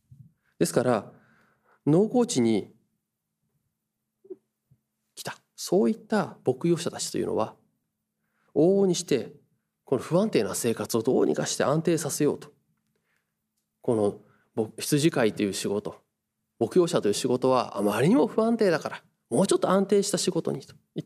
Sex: male